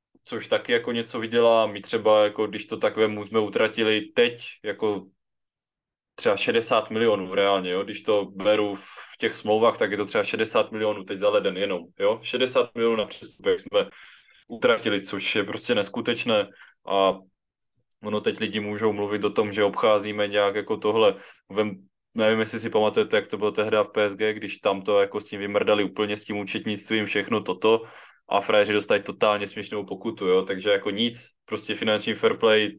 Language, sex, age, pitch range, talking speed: Czech, male, 20-39, 105-115 Hz, 180 wpm